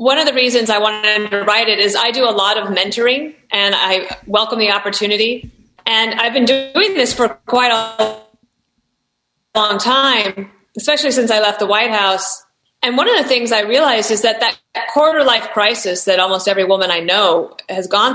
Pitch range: 200-240 Hz